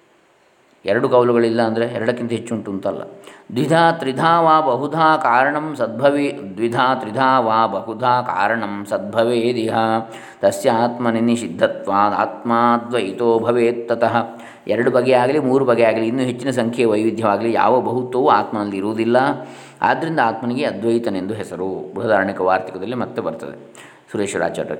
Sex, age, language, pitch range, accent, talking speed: male, 20-39, Kannada, 115-130 Hz, native, 110 wpm